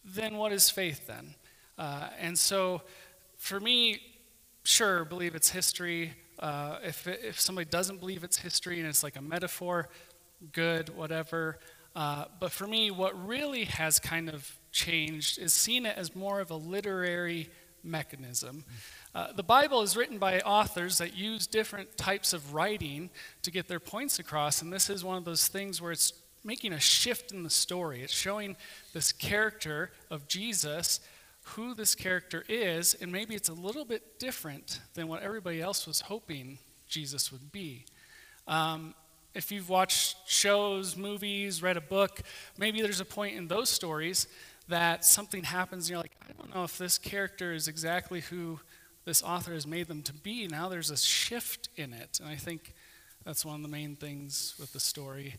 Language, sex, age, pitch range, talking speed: English, male, 40-59, 160-195 Hz, 175 wpm